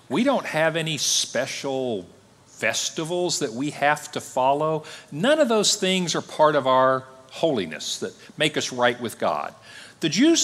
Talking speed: 160 wpm